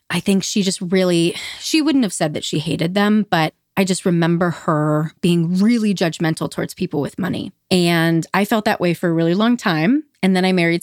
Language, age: English, 30-49